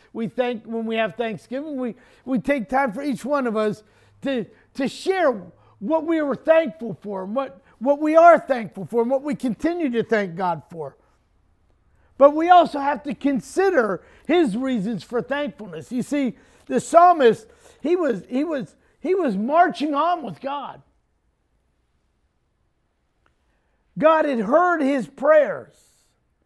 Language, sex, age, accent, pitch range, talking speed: English, male, 50-69, American, 225-310 Hz, 150 wpm